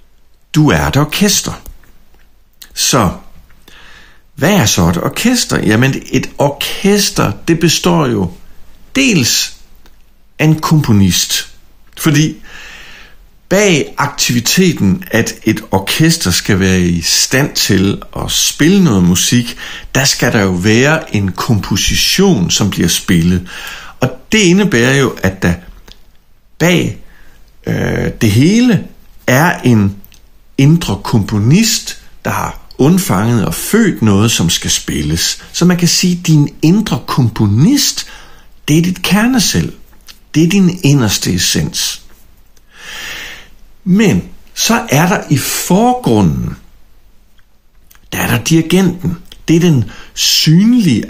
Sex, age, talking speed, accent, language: male, 60-79, 115 wpm, native, Danish